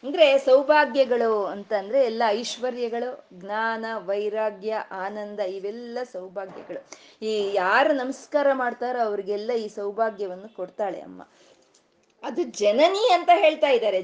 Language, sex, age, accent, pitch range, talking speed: Kannada, female, 20-39, native, 215-290 Hz, 105 wpm